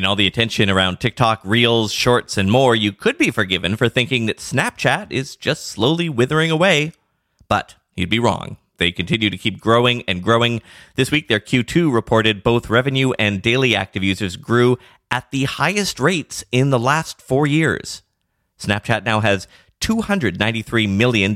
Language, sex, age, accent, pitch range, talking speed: English, male, 30-49, American, 100-135 Hz, 165 wpm